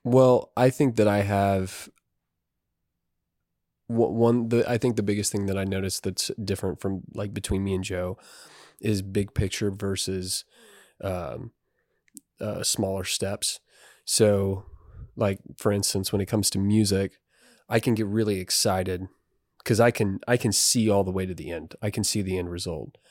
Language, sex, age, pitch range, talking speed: English, male, 20-39, 95-110 Hz, 165 wpm